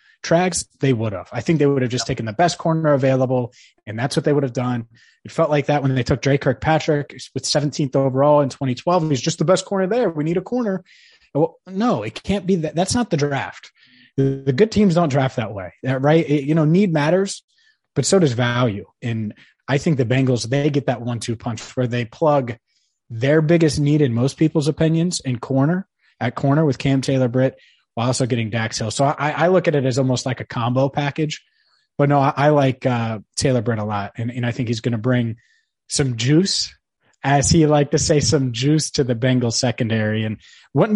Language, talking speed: English, 220 wpm